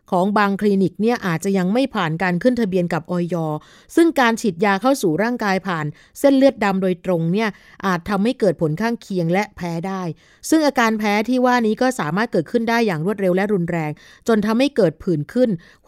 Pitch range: 180-230 Hz